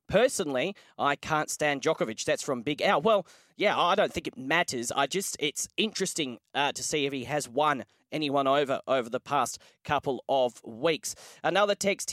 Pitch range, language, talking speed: 140-175 Hz, English, 185 wpm